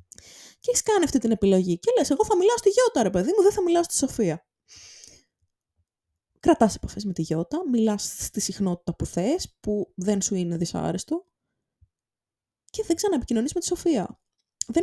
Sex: female